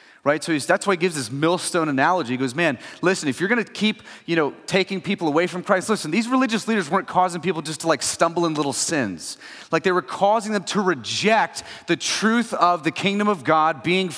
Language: English